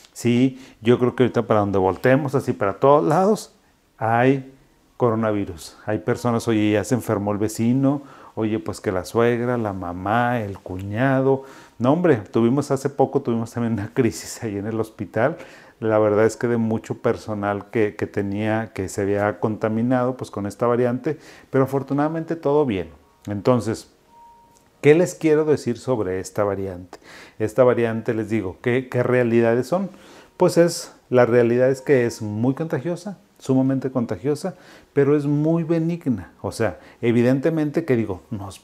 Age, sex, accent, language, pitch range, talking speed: 40-59, male, Mexican, Spanish, 110-135 Hz, 160 wpm